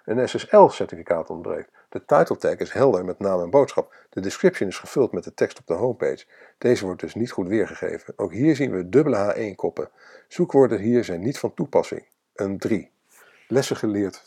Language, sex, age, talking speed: Dutch, male, 50-69, 195 wpm